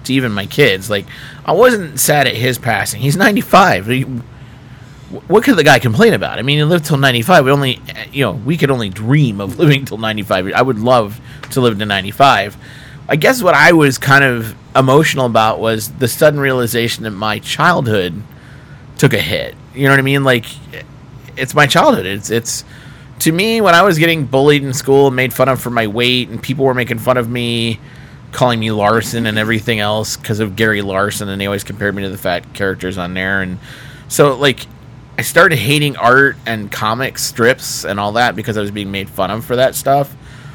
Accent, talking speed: American, 215 wpm